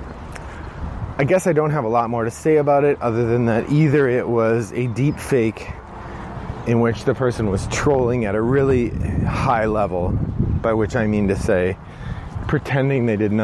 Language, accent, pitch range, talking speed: English, American, 95-125 Hz, 185 wpm